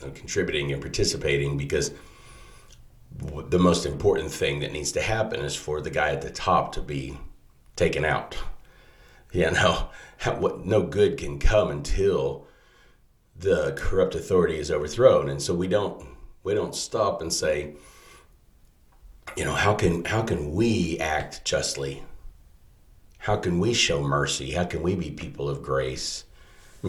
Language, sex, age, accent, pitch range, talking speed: English, male, 40-59, American, 70-90 Hz, 145 wpm